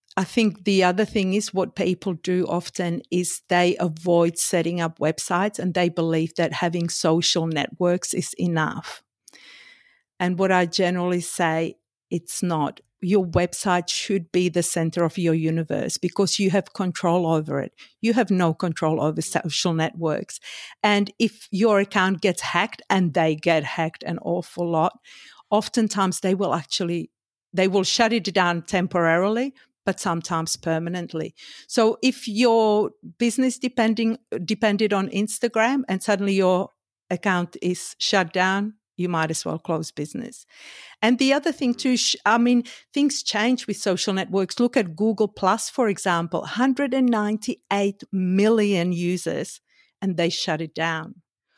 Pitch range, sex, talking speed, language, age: 170-215 Hz, female, 150 wpm, English, 50-69